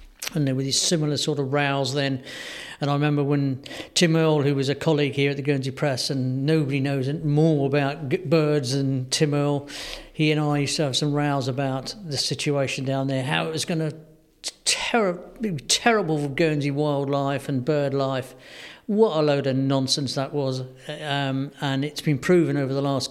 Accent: British